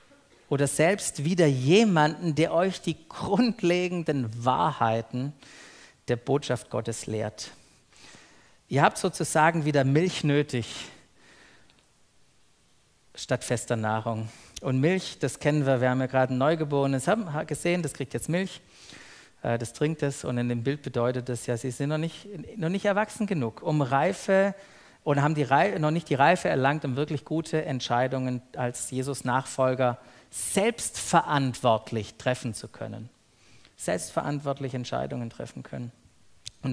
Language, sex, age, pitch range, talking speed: German, male, 50-69, 125-170 Hz, 135 wpm